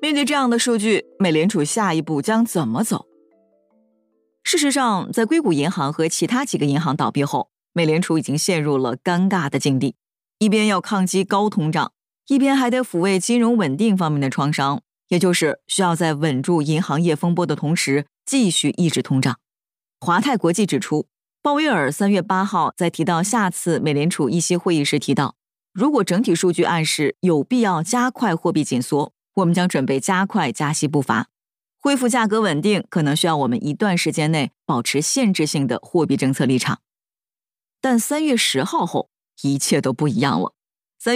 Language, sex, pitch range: Chinese, female, 150-210 Hz